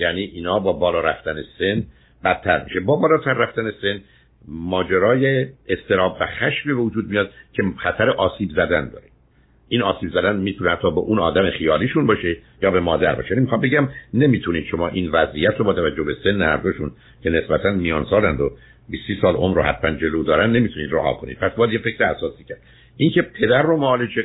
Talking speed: 180 wpm